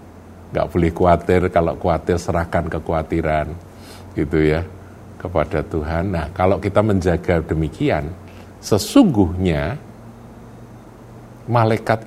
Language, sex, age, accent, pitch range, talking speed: Indonesian, male, 50-69, native, 80-110 Hz, 90 wpm